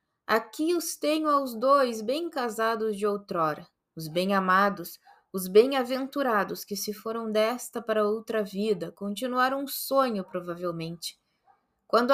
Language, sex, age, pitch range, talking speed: Portuguese, female, 20-39, 195-255 Hz, 130 wpm